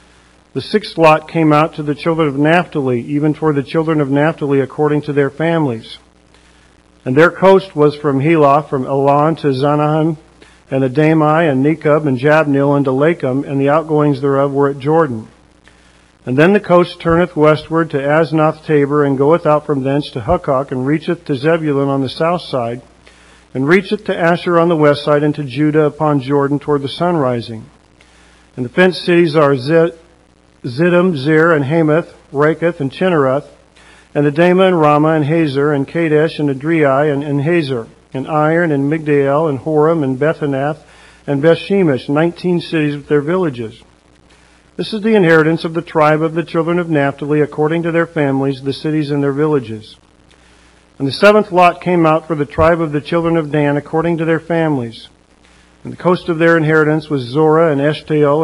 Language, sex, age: English, male, 50-69